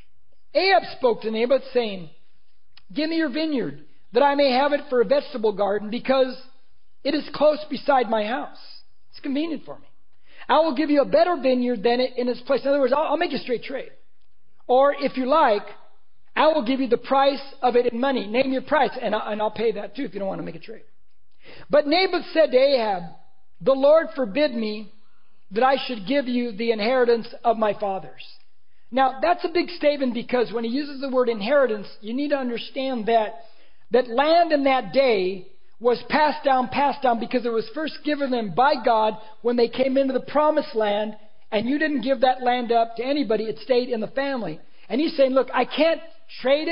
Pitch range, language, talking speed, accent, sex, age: 235-290 Hz, English, 205 wpm, American, male, 40-59